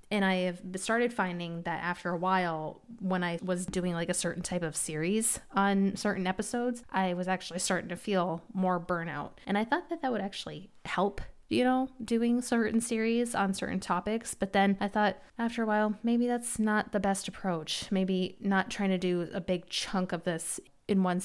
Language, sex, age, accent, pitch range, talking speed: English, female, 20-39, American, 175-215 Hz, 200 wpm